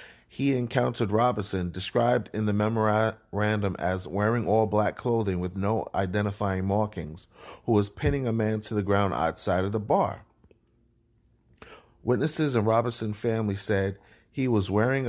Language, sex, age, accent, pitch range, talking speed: English, male, 30-49, American, 95-120 Hz, 145 wpm